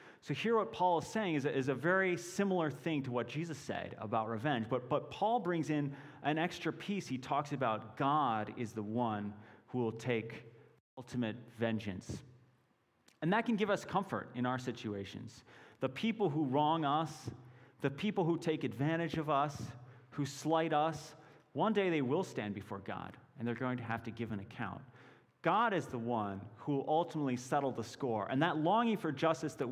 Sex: male